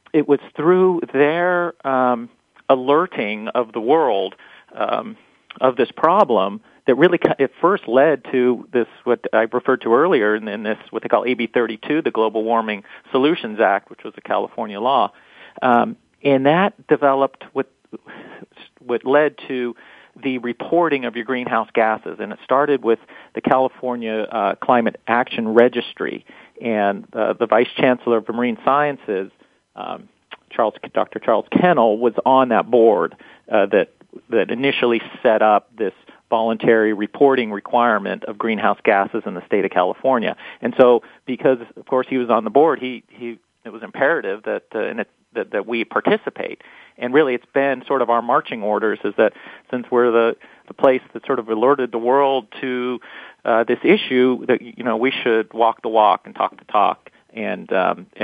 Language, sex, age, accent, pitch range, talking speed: English, male, 40-59, American, 115-140 Hz, 170 wpm